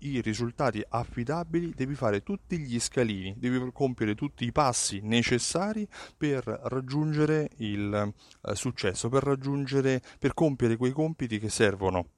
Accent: native